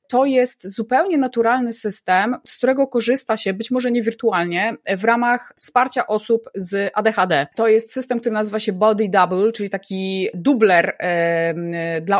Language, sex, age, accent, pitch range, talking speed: Polish, female, 20-39, native, 210-240 Hz, 150 wpm